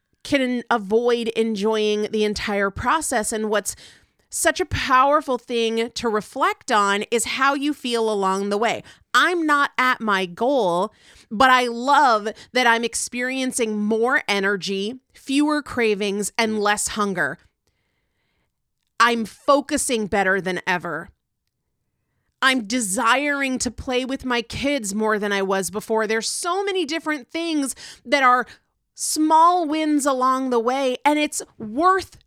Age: 30-49